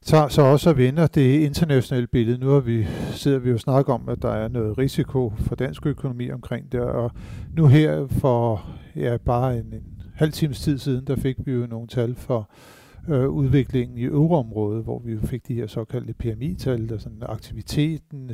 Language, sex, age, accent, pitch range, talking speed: Danish, male, 50-69, native, 115-140 Hz, 195 wpm